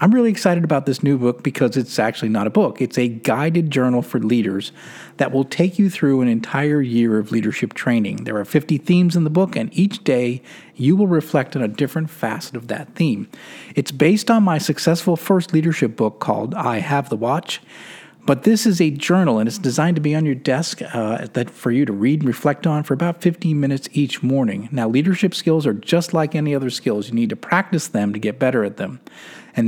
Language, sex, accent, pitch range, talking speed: English, male, American, 125-165 Hz, 220 wpm